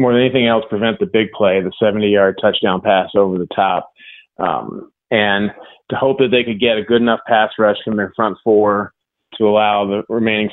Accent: American